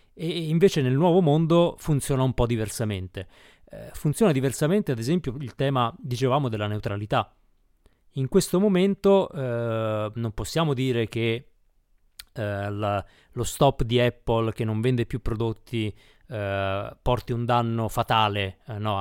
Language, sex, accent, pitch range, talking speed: Italian, male, native, 105-130 Hz, 135 wpm